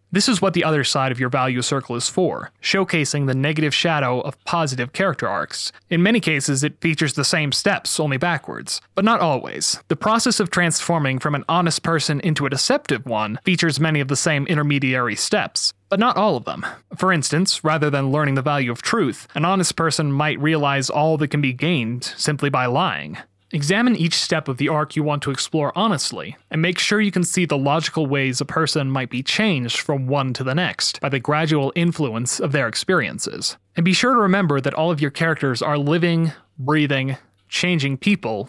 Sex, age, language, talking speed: male, 30-49, English, 205 wpm